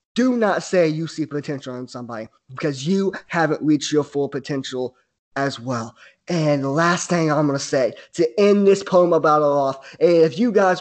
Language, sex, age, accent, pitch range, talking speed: English, male, 20-39, American, 150-195 Hz, 195 wpm